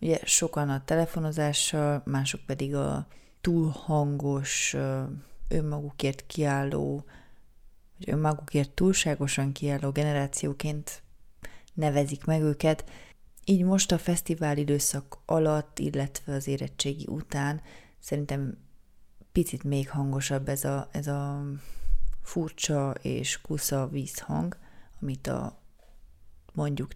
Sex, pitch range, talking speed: female, 140-160 Hz, 100 wpm